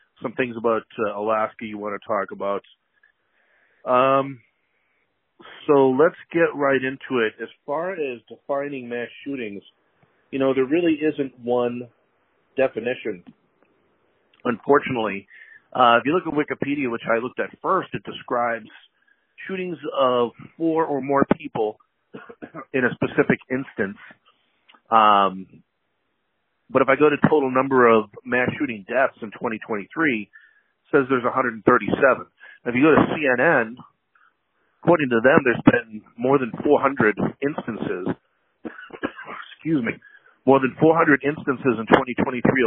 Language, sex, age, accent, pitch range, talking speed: English, male, 40-59, American, 115-145 Hz, 130 wpm